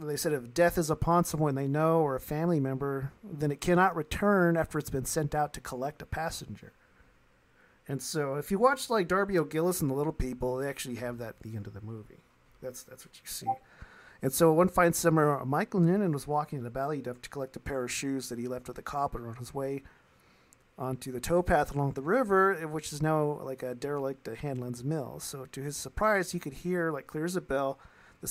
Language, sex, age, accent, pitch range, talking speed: English, male, 40-59, American, 135-165 Hz, 230 wpm